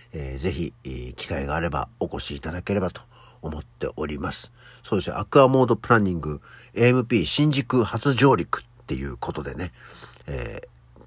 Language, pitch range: Japanese, 85-130 Hz